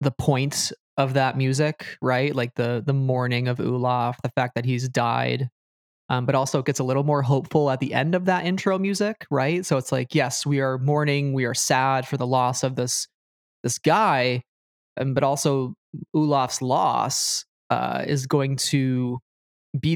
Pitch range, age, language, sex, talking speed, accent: 125-150 Hz, 20-39, English, male, 185 wpm, American